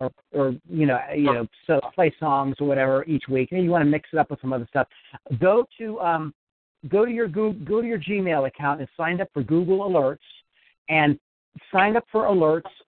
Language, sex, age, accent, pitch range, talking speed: English, male, 50-69, American, 145-185 Hz, 220 wpm